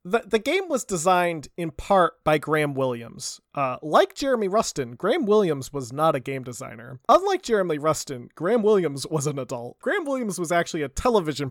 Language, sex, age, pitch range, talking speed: English, male, 30-49, 135-195 Hz, 180 wpm